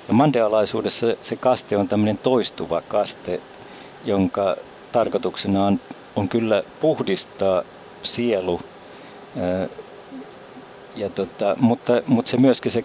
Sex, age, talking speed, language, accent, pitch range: male, 60-79, 105 wpm, Finnish, native, 90-115 Hz